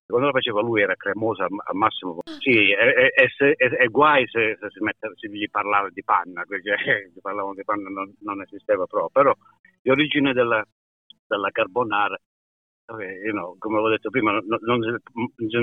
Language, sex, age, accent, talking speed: Italian, male, 60-79, native, 185 wpm